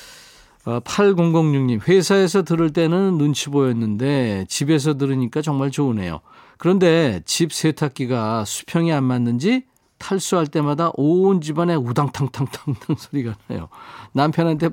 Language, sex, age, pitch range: Korean, male, 40-59, 120-170 Hz